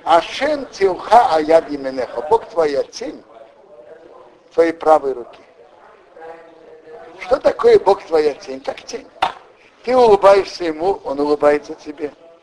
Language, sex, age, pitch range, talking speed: Russian, male, 60-79, 160-265 Hz, 110 wpm